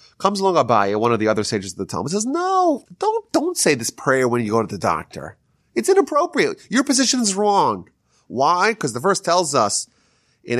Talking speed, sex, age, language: 210 wpm, male, 30-49, English